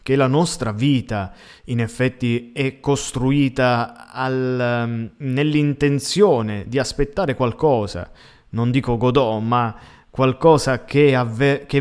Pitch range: 105-135 Hz